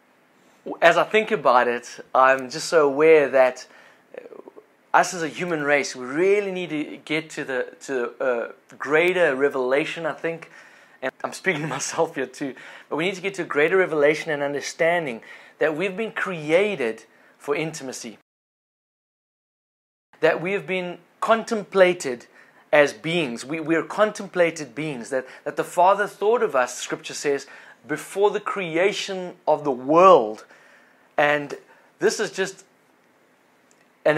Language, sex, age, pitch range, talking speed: English, male, 30-49, 145-190 Hz, 145 wpm